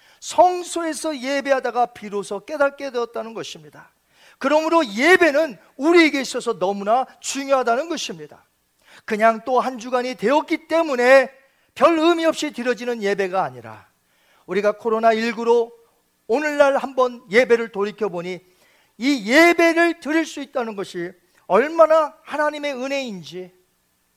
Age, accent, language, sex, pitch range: 40-59, native, Korean, male, 195-290 Hz